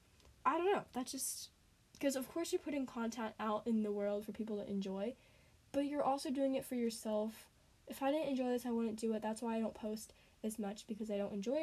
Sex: female